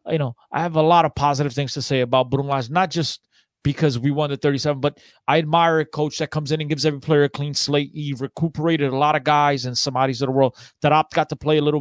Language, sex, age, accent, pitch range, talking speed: English, male, 30-49, American, 140-165 Hz, 265 wpm